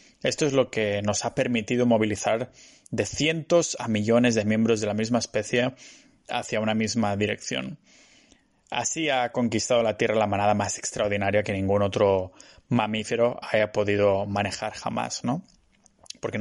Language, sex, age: Spanish, male, 20-39